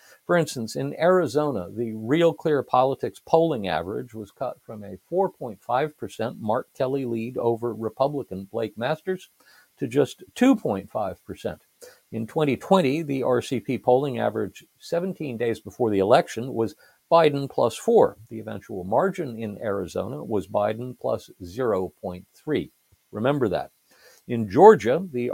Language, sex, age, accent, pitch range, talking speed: English, male, 50-69, American, 110-140 Hz, 130 wpm